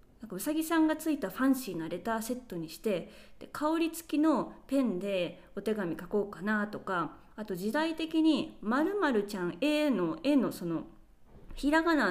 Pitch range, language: 185-295 Hz, Japanese